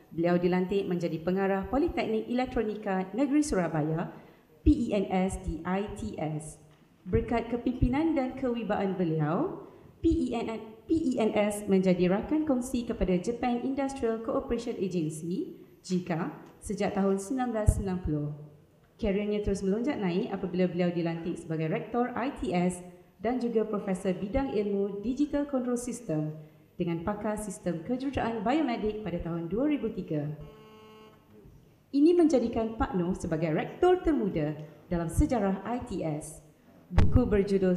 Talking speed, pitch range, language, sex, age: 105 wpm, 175-245 Hz, Malay, female, 30-49